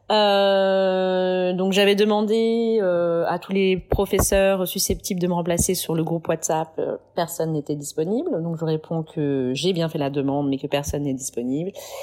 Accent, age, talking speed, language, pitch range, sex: French, 30-49, 175 wpm, French, 170-210 Hz, female